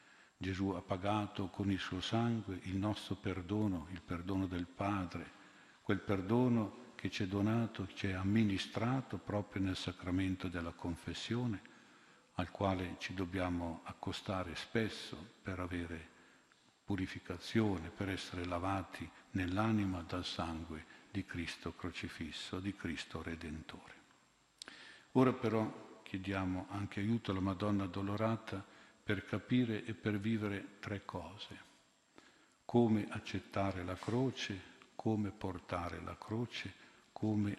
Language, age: Italian, 50-69